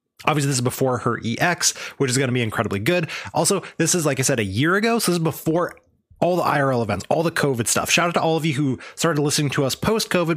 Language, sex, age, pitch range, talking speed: English, male, 20-39, 130-170 Hz, 265 wpm